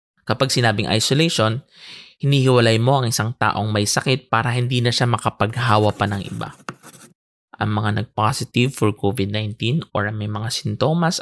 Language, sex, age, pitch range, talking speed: English, male, 20-39, 105-130 Hz, 140 wpm